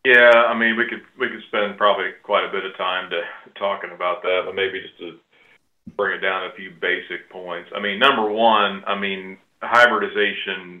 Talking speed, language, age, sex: 200 wpm, English, 40-59, male